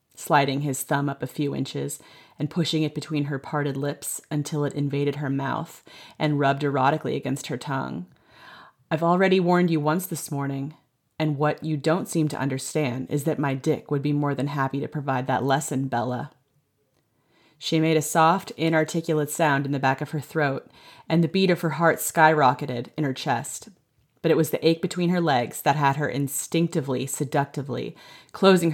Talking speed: 185 wpm